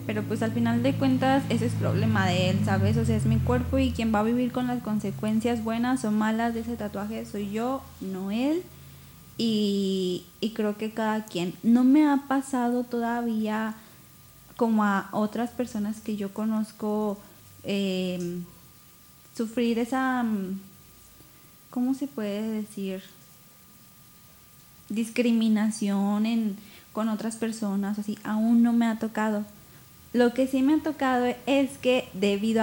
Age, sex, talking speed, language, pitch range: 20-39, female, 145 wpm, Spanish, 190-235 Hz